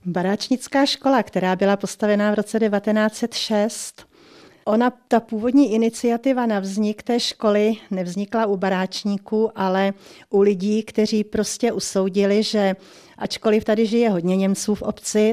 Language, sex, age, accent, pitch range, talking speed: Czech, female, 40-59, native, 190-220 Hz, 130 wpm